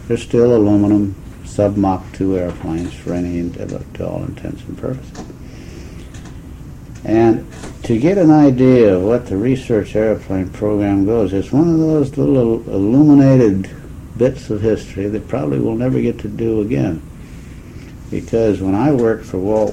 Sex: male